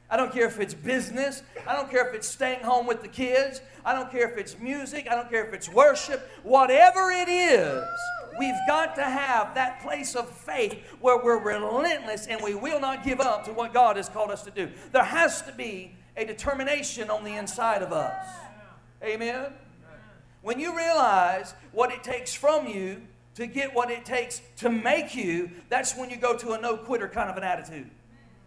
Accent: American